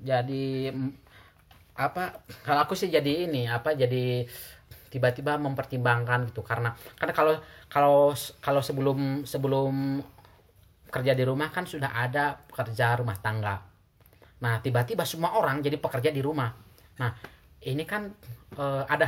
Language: Indonesian